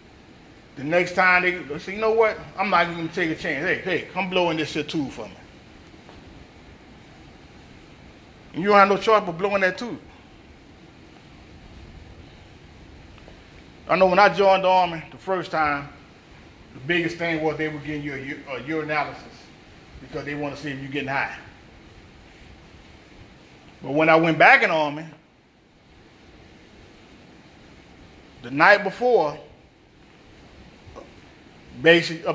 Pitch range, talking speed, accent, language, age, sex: 150-205 Hz, 145 wpm, American, English, 30-49, male